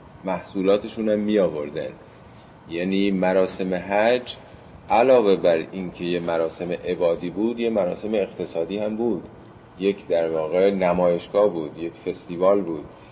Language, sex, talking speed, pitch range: Persian, male, 125 wpm, 95-115 Hz